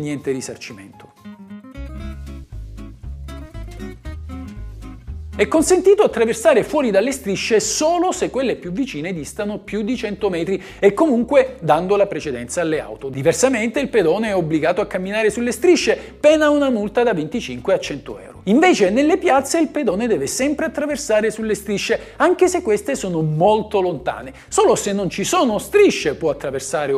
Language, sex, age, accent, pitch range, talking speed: Italian, male, 50-69, native, 165-270 Hz, 145 wpm